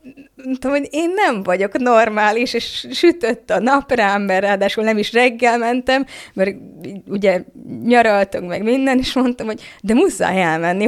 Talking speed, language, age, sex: 160 wpm, Hungarian, 20-39, female